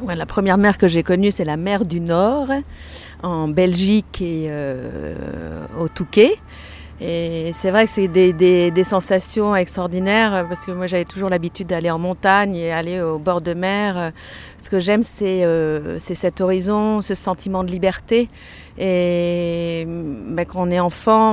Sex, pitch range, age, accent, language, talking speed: female, 165-195 Hz, 40-59, French, French, 170 wpm